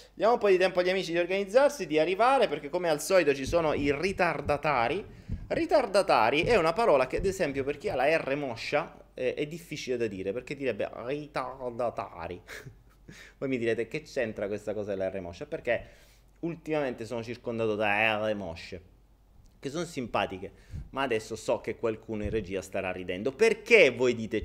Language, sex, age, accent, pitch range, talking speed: Italian, male, 30-49, native, 110-155 Hz, 175 wpm